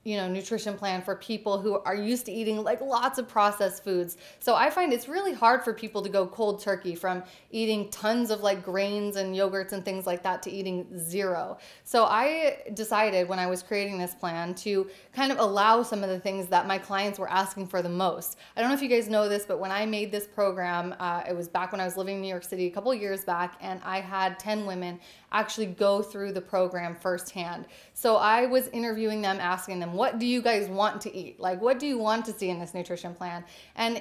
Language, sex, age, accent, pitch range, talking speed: English, female, 30-49, American, 185-220 Hz, 240 wpm